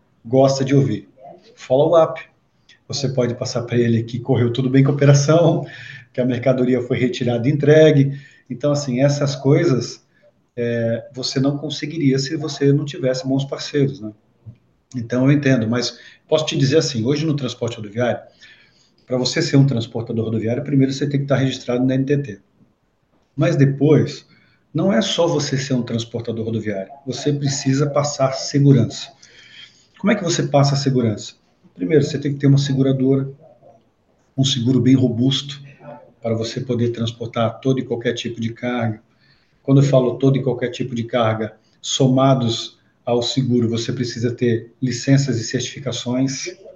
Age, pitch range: 40-59, 120-140 Hz